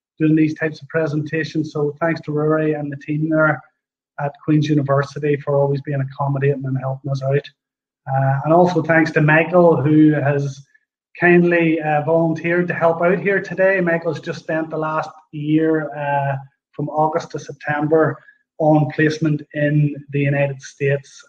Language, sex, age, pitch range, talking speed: English, male, 30-49, 140-170 Hz, 160 wpm